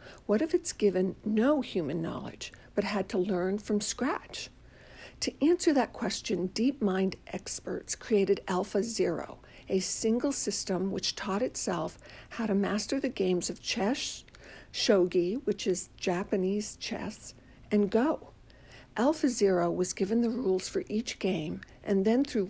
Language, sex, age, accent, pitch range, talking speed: English, female, 60-79, American, 190-250 Hz, 145 wpm